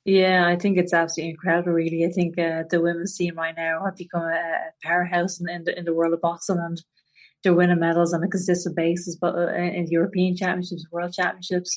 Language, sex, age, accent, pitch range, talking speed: English, female, 30-49, Irish, 165-175 Hz, 215 wpm